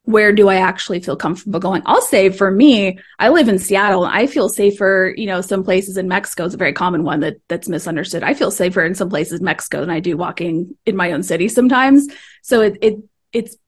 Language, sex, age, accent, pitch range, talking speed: English, female, 20-39, American, 185-215 Hz, 230 wpm